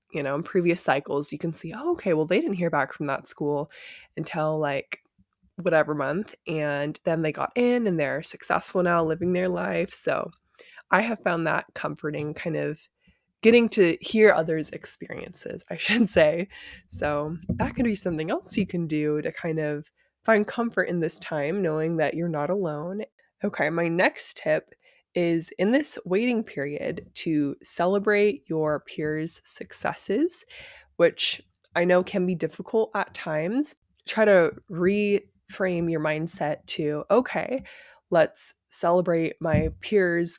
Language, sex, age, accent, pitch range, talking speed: English, female, 20-39, American, 155-195 Hz, 155 wpm